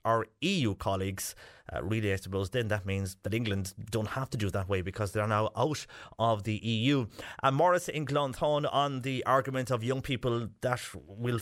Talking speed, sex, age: 205 wpm, male, 30-49